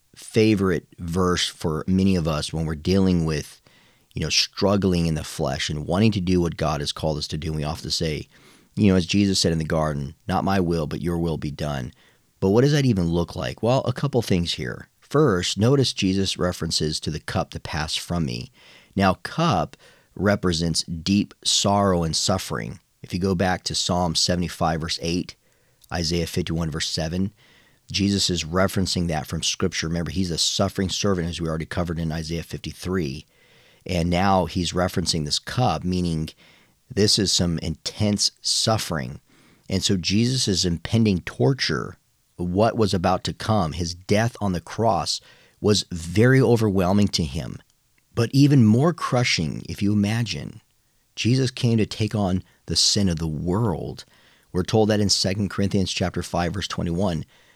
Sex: male